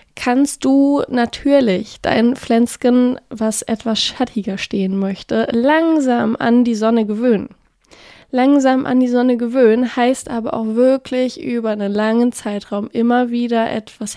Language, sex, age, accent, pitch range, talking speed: German, female, 20-39, German, 220-255 Hz, 130 wpm